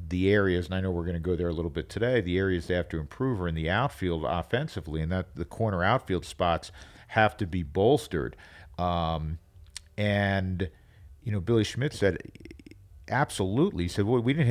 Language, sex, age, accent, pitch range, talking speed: English, male, 50-69, American, 90-115 Hz, 200 wpm